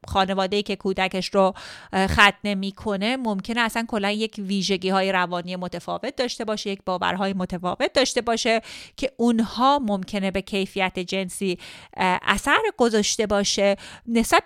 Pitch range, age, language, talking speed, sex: 190-230 Hz, 30-49, Persian, 130 wpm, female